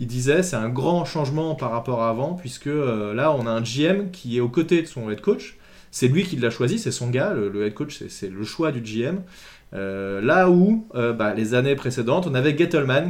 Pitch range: 125-160 Hz